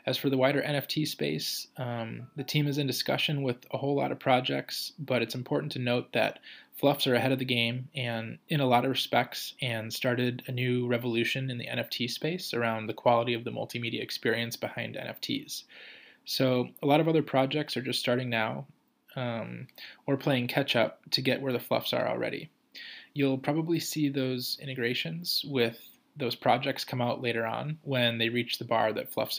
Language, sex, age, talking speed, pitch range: English, male, 20-39, 195 wpm, 120-140 Hz